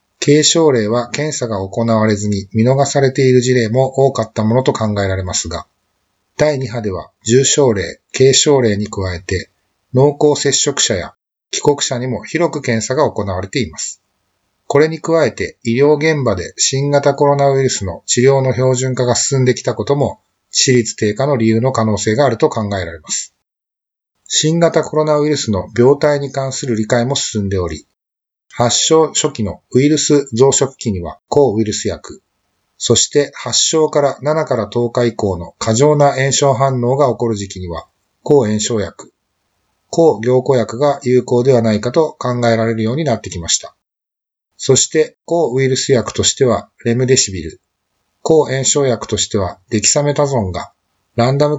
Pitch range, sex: 105-140 Hz, male